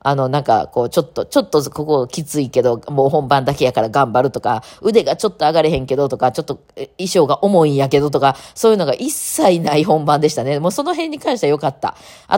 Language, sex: Japanese, female